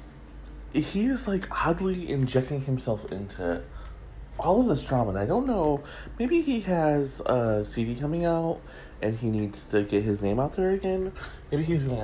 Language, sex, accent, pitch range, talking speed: English, male, American, 95-155 Hz, 175 wpm